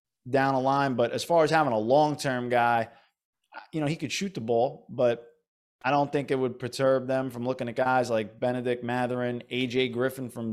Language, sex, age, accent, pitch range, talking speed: English, male, 20-39, American, 120-145 Hz, 205 wpm